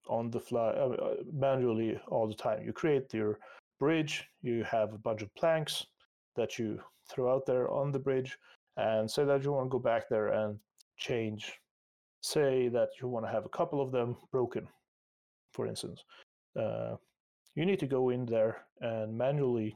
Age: 30-49